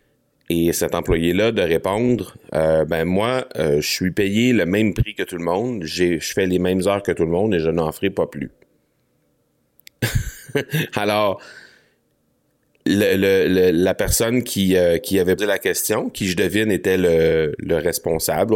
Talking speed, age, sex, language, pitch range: 155 wpm, 30-49, male, French, 80-100 Hz